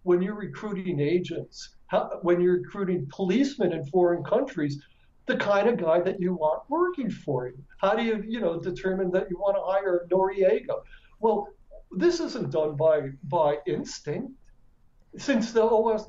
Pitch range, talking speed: 170-230 Hz, 165 wpm